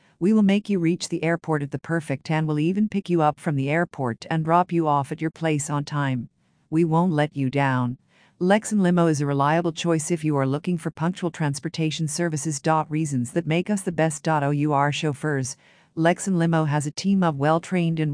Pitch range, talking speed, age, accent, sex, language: 145-175 Hz, 210 wpm, 50-69, American, female, English